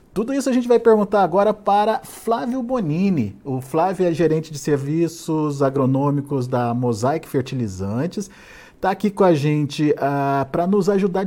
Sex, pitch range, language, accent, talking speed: male, 130-185 Hz, Portuguese, Brazilian, 155 wpm